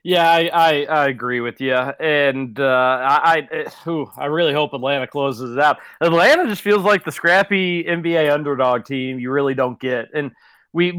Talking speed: 185 wpm